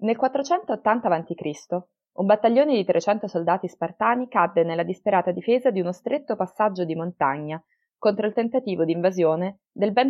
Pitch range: 155-205 Hz